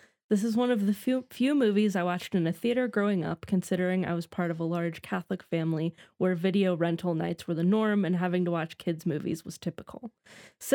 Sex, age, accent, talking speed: female, 20-39, American, 225 wpm